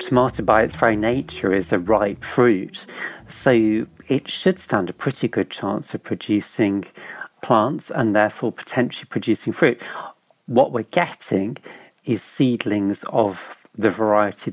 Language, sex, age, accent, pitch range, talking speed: English, male, 40-59, British, 105-135 Hz, 135 wpm